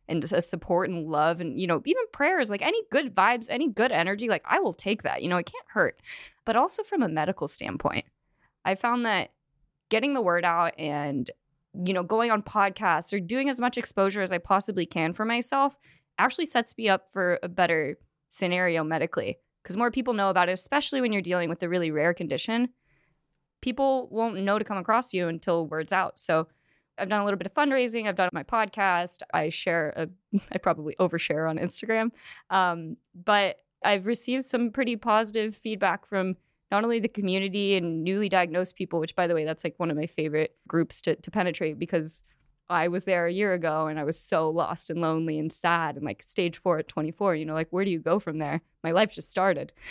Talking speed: 210 wpm